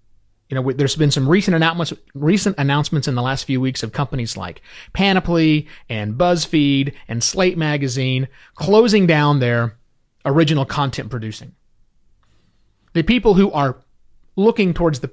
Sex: male